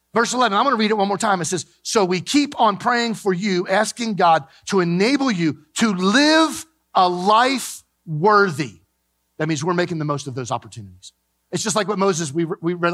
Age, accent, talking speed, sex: 40-59, American, 210 wpm, male